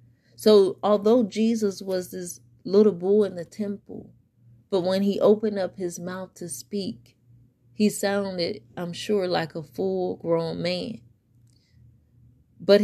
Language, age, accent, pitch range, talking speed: English, 30-49, American, 120-205 Hz, 135 wpm